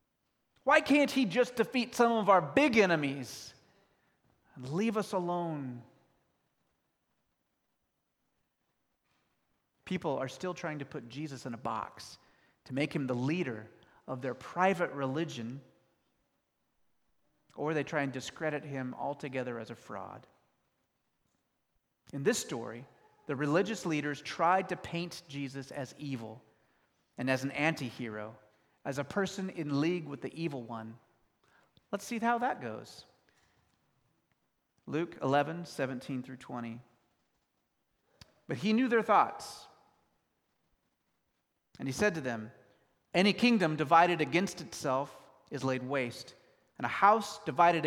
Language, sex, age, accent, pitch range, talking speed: English, male, 30-49, American, 130-190 Hz, 125 wpm